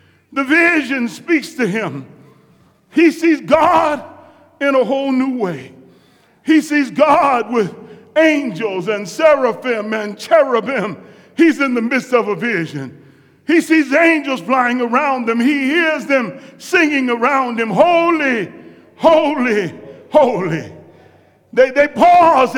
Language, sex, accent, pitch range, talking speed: English, male, American, 245-315 Hz, 125 wpm